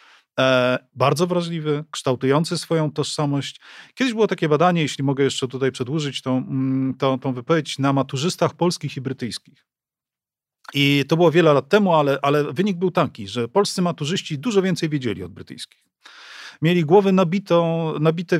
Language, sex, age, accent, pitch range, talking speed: Polish, male, 40-59, native, 140-185 Hz, 145 wpm